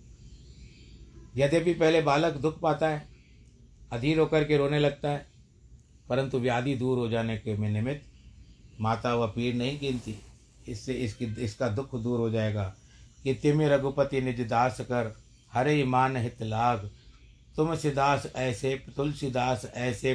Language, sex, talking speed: Hindi, male, 135 wpm